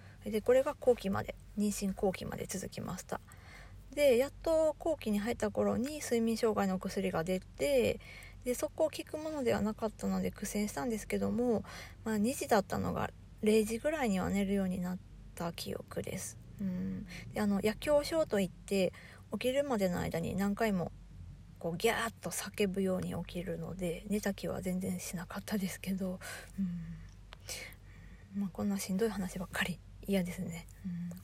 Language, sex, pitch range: Japanese, female, 185-230 Hz